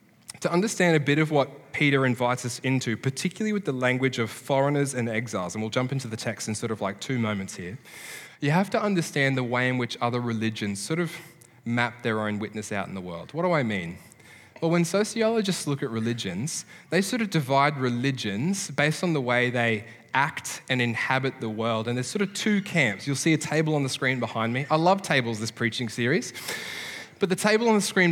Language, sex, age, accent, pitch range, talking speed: English, male, 10-29, Australian, 120-165 Hz, 220 wpm